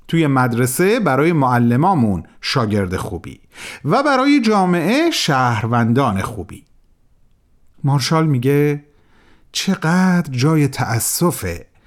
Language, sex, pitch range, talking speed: Persian, male, 125-195 Hz, 80 wpm